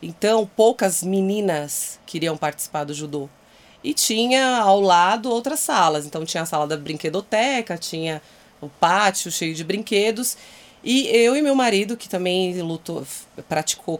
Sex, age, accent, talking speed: female, 30-49, Brazilian, 150 wpm